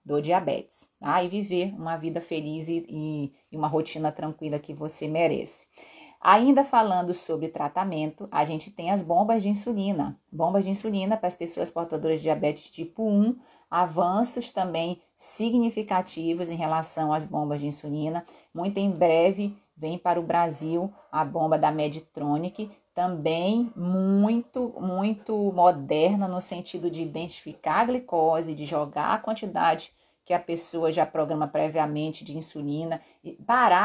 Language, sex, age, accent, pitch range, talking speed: Portuguese, female, 30-49, Brazilian, 155-195 Hz, 145 wpm